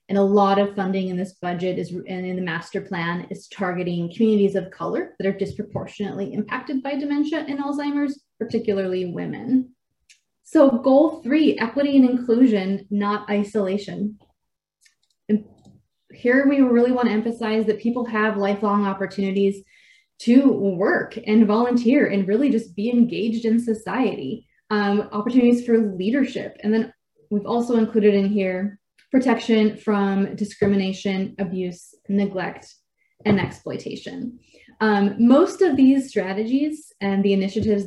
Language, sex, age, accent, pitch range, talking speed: English, female, 20-39, American, 195-235 Hz, 130 wpm